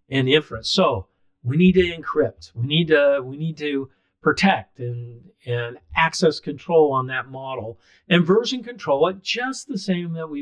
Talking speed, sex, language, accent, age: 175 wpm, male, English, American, 50-69